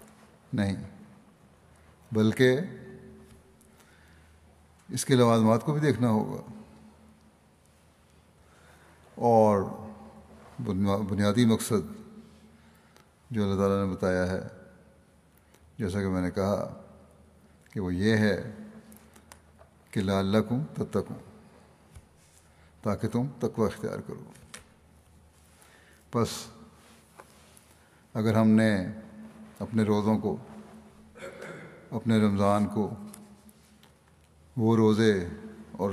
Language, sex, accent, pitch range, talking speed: English, male, Indian, 80-115 Hz, 75 wpm